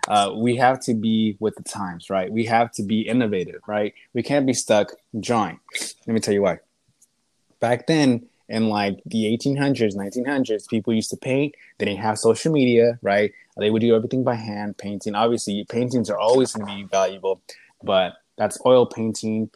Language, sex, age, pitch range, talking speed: English, male, 20-39, 100-120 Hz, 185 wpm